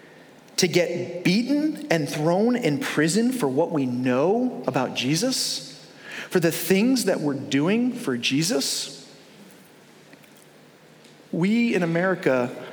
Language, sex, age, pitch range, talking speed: English, male, 40-59, 135-185 Hz, 115 wpm